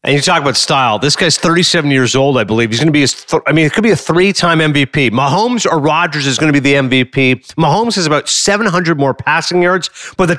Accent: American